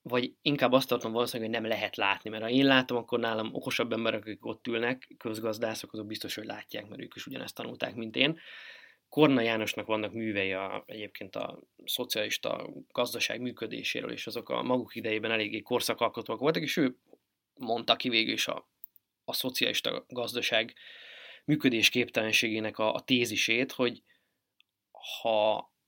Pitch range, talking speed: 110-135 Hz, 150 wpm